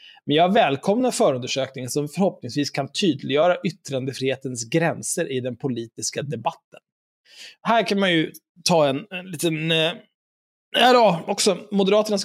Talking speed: 130 wpm